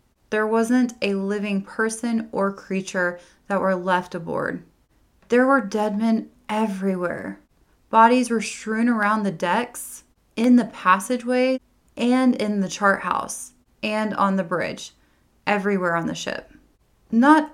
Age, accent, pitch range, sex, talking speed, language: 20-39, American, 190-235 Hz, female, 135 wpm, English